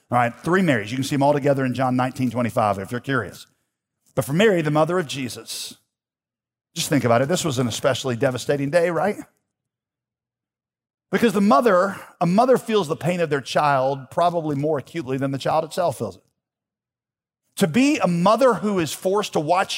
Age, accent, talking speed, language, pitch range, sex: 50-69, American, 195 wpm, English, 140-220 Hz, male